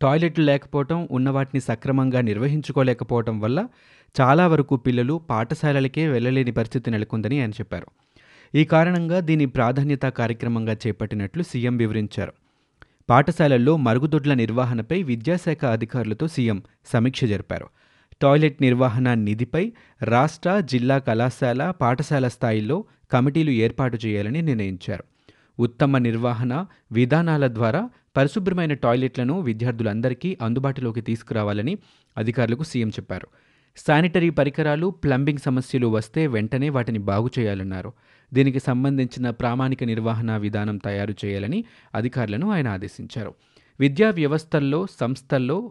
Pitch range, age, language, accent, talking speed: 115-145 Hz, 30-49, Telugu, native, 100 wpm